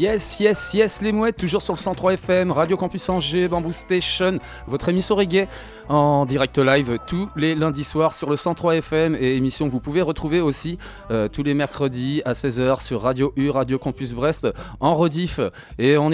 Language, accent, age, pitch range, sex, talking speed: French, French, 20-39, 130-170 Hz, male, 185 wpm